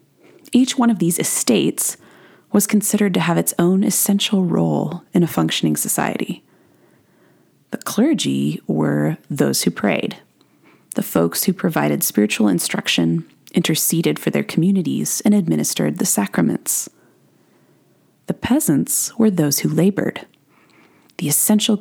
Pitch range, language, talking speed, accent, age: 155-215 Hz, English, 125 wpm, American, 30-49